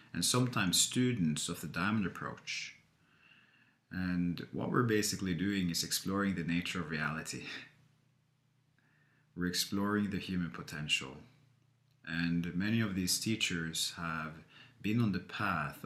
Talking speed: 125 wpm